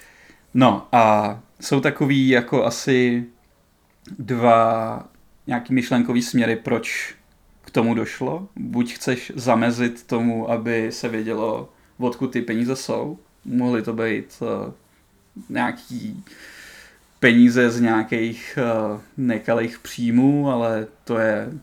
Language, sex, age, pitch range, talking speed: Czech, male, 20-39, 110-120 Hz, 105 wpm